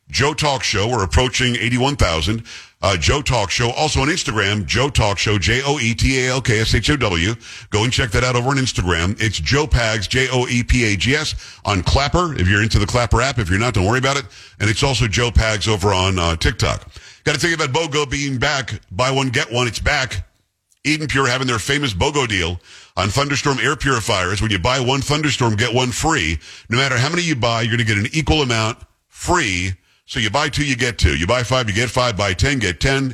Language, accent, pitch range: English, American, 105-135 Hz